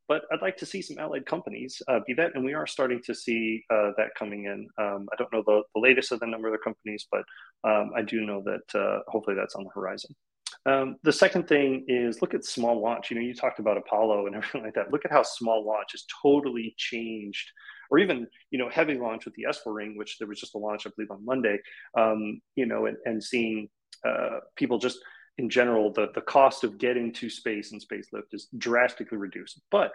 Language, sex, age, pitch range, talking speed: English, male, 30-49, 110-120 Hz, 235 wpm